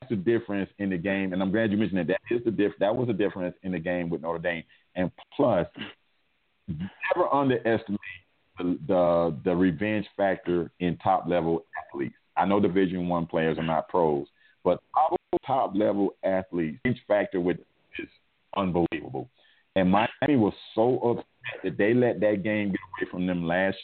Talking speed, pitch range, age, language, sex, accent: 180 wpm, 90-115 Hz, 40-59, English, male, American